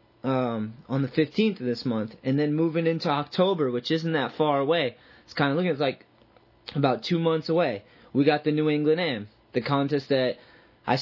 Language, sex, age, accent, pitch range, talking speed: English, male, 20-39, American, 125-155 Hz, 200 wpm